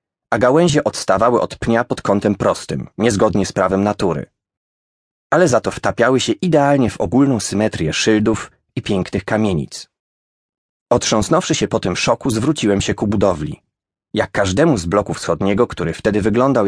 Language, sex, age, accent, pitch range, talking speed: English, male, 30-49, Polish, 100-130 Hz, 150 wpm